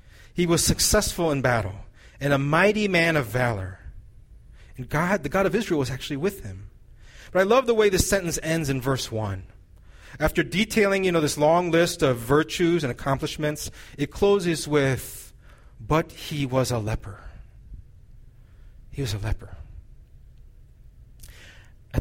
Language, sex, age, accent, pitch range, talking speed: English, male, 30-49, American, 110-155 Hz, 155 wpm